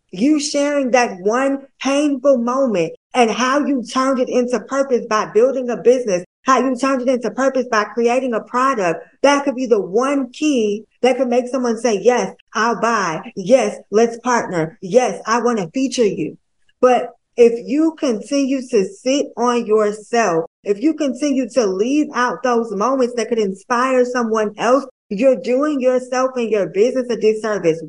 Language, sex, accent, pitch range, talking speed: English, female, American, 220-265 Hz, 170 wpm